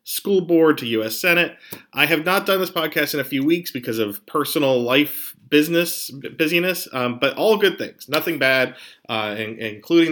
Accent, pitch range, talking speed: American, 120-160 Hz, 180 wpm